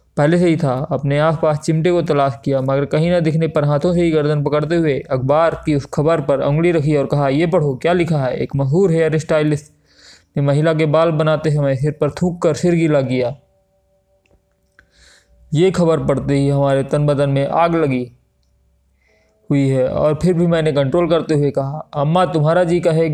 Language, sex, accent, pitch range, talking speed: Hindi, male, native, 140-165 Hz, 200 wpm